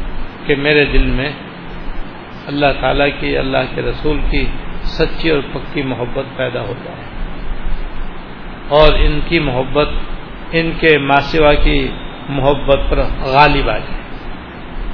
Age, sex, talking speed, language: 60-79, male, 125 wpm, Urdu